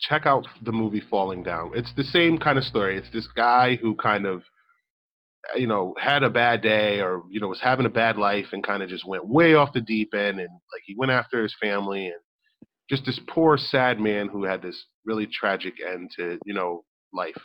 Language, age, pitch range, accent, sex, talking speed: English, 30-49, 100-135 Hz, American, male, 225 wpm